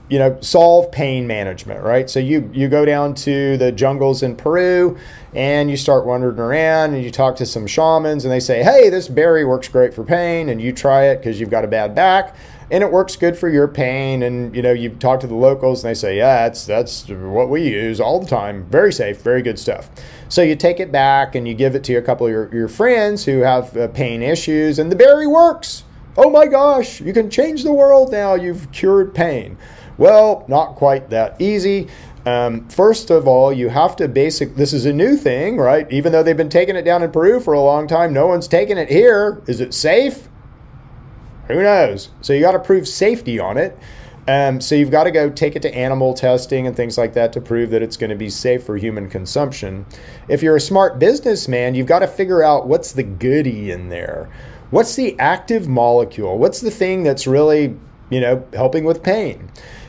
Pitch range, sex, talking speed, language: 125-170 Hz, male, 215 wpm, English